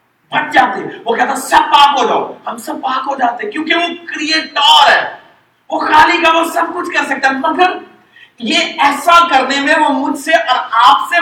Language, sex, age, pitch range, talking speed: Urdu, male, 50-69, 275-335 Hz, 175 wpm